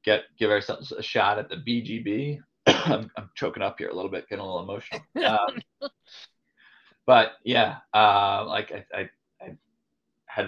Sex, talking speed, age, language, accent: male, 160 wpm, 20-39, English, American